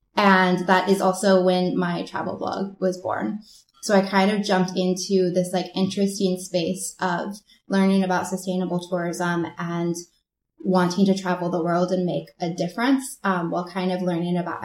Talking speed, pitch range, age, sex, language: 170 wpm, 175-195 Hz, 10-29, female, English